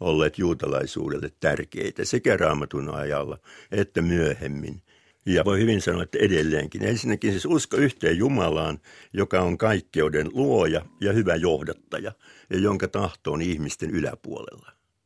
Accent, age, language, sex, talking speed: native, 60-79, Finnish, male, 130 wpm